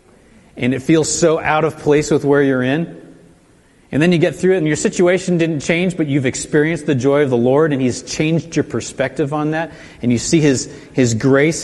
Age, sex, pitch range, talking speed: 40-59, male, 110-145 Hz, 220 wpm